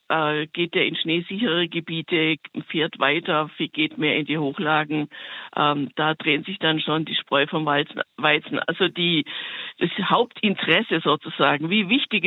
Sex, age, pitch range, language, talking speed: female, 50-69, 155-180 Hz, German, 130 wpm